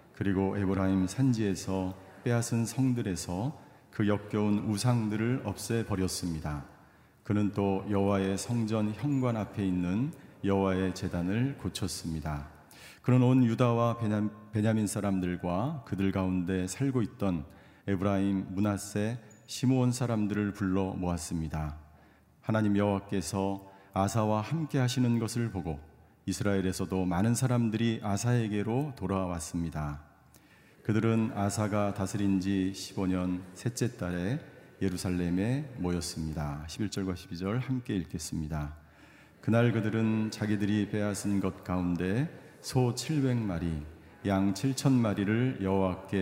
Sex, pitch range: male, 95-115 Hz